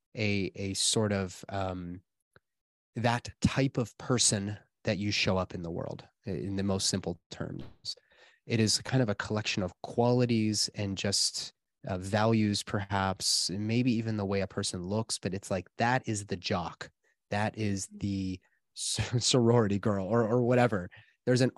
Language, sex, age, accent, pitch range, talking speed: English, male, 30-49, American, 95-115 Hz, 165 wpm